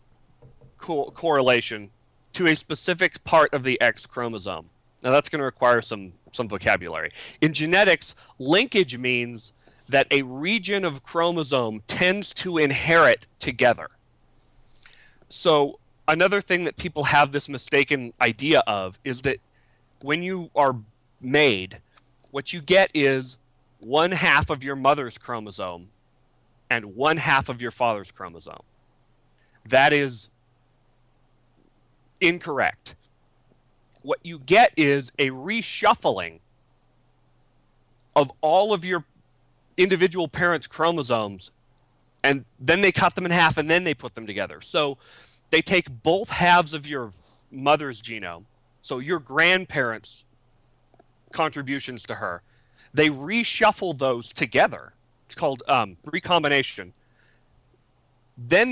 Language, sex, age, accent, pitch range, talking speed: English, male, 30-49, American, 120-160 Hz, 120 wpm